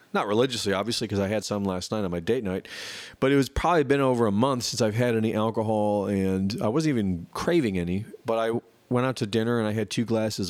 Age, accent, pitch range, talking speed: 40-59, American, 100-130 Hz, 245 wpm